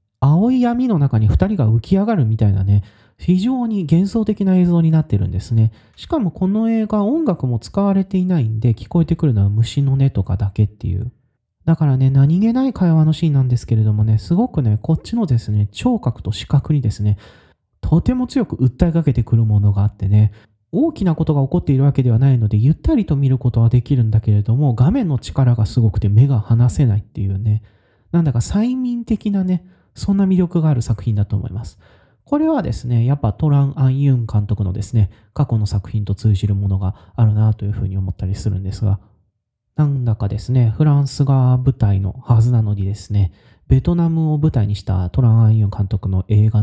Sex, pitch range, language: male, 105-155 Hz, Japanese